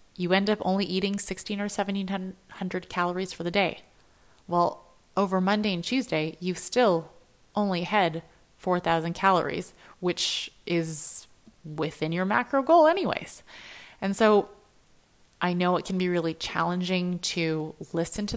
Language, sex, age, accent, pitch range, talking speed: English, female, 30-49, American, 170-195 Hz, 135 wpm